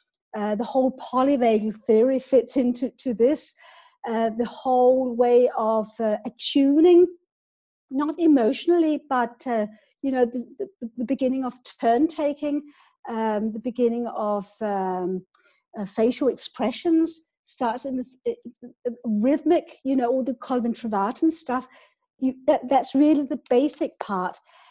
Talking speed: 140 wpm